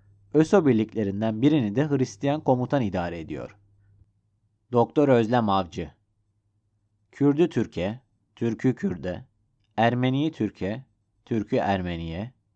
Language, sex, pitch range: Turkish, male, 100-130 Hz